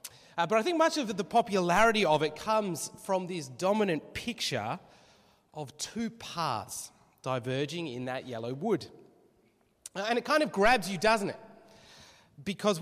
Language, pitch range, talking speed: English, 150-210 Hz, 155 wpm